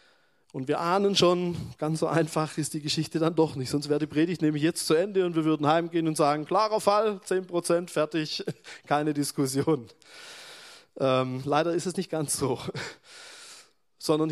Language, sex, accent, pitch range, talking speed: German, male, German, 145-180 Hz, 175 wpm